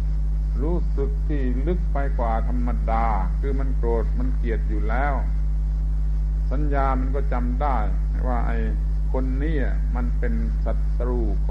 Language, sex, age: Thai, male, 60-79